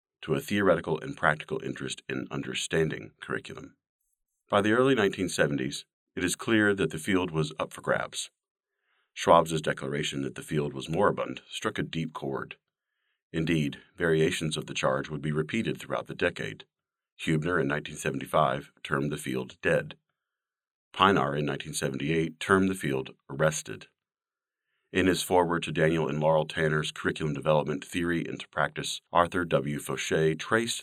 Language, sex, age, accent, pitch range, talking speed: English, male, 40-59, American, 70-85 Hz, 150 wpm